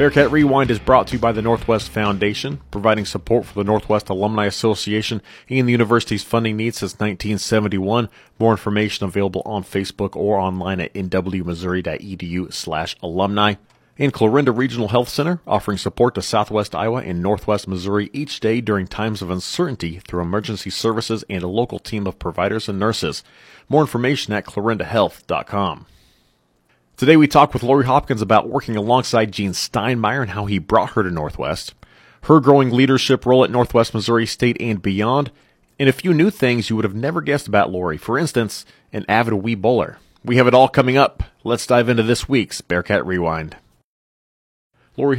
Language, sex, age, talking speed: English, male, 30-49, 170 wpm